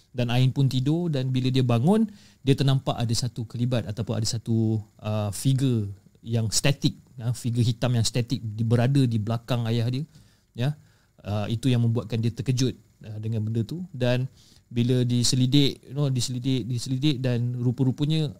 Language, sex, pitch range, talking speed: Malay, male, 110-130 Hz, 165 wpm